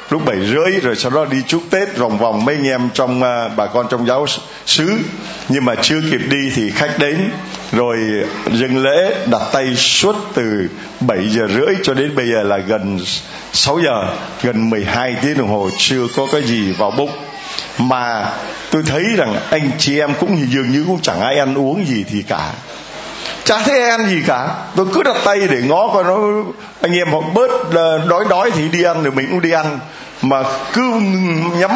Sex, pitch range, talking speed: male, 125-180 Hz, 200 wpm